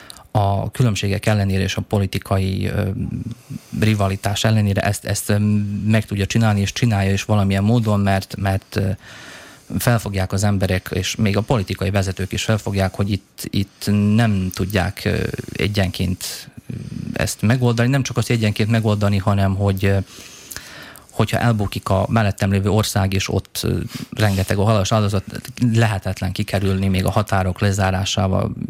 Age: 30-49